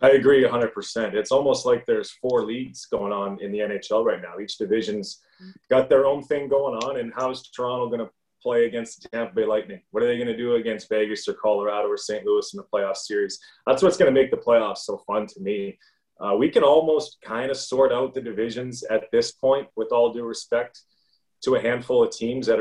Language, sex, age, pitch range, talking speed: English, male, 30-49, 115-190 Hz, 230 wpm